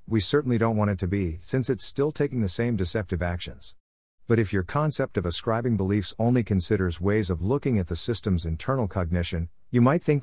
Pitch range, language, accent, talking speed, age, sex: 90-115 Hz, English, American, 205 wpm, 50-69, male